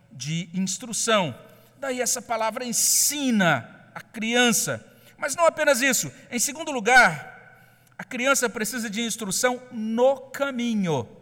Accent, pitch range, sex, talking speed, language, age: Brazilian, 165-245 Hz, male, 120 wpm, Portuguese, 50-69